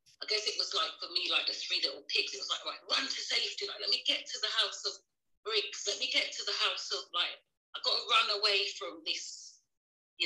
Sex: female